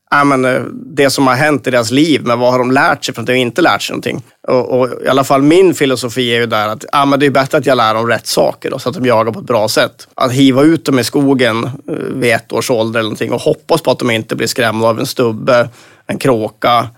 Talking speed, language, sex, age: 270 wpm, Swedish, male, 30-49